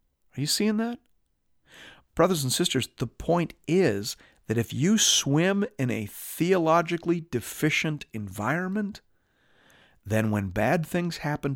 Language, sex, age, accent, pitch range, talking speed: English, male, 50-69, American, 110-170 Hz, 125 wpm